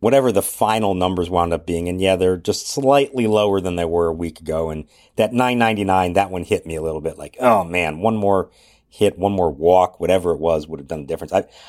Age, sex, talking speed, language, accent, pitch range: 50-69, male, 240 wpm, English, American, 85-125 Hz